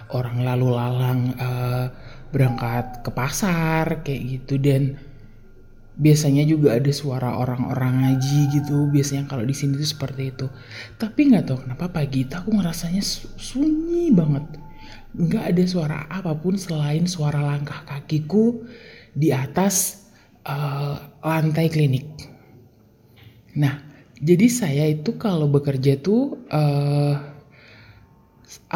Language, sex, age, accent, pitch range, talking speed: Indonesian, male, 20-39, native, 130-170 Hz, 115 wpm